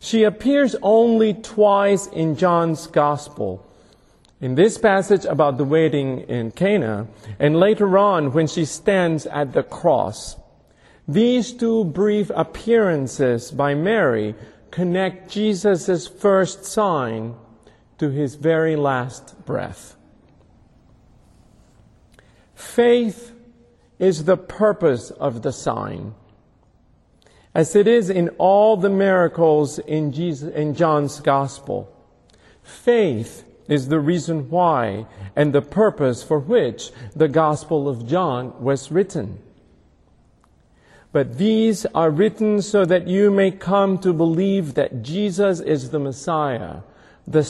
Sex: male